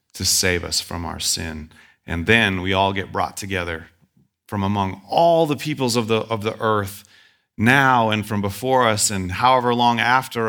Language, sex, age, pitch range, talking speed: English, male, 30-49, 95-120 Hz, 185 wpm